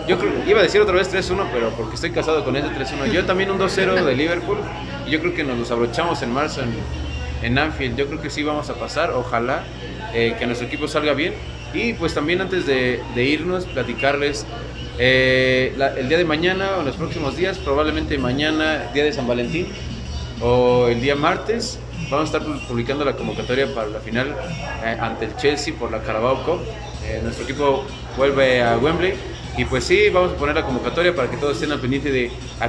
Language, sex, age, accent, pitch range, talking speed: Spanish, male, 30-49, Mexican, 120-155 Hz, 210 wpm